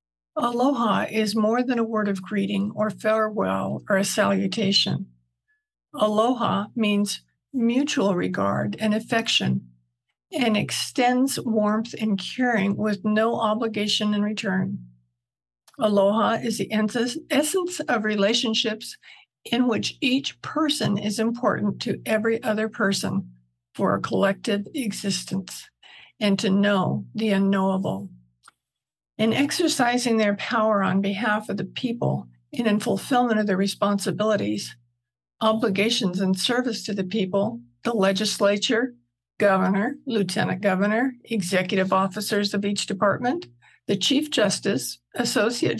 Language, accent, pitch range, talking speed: English, American, 195-235 Hz, 115 wpm